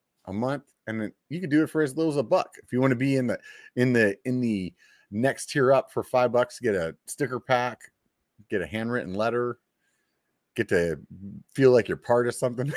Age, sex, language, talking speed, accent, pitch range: 30-49, male, English, 220 wpm, American, 100-130 Hz